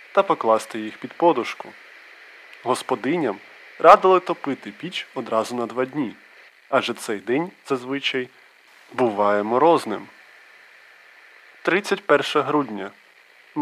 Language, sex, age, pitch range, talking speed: Ukrainian, male, 20-39, 115-155 Hz, 95 wpm